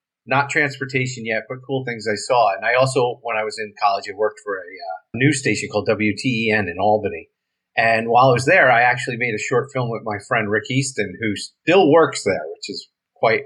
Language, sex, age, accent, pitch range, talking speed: English, male, 40-59, American, 110-135 Hz, 225 wpm